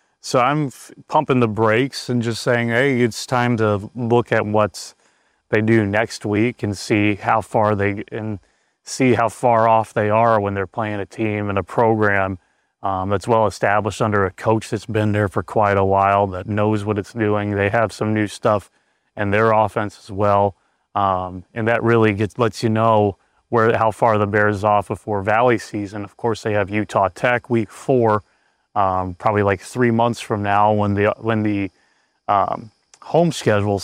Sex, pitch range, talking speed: male, 105-115 Hz, 195 wpm